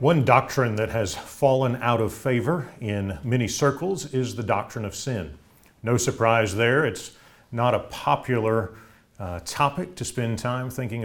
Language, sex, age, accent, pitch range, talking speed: English, male, 40-59, American, 110-145 Hz, 155 wpm